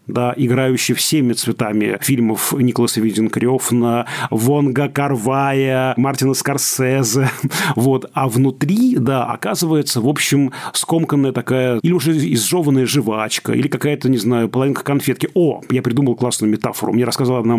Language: Russian